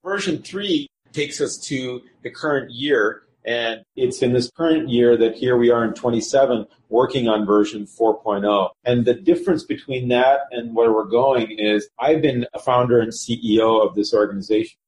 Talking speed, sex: 175 wpm, male